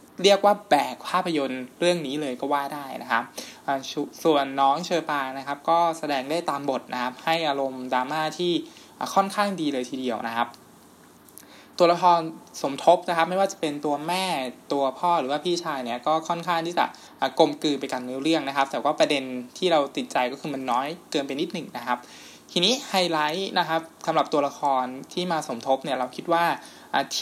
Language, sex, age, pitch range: Thai, male, 20-39, 135-175 Hz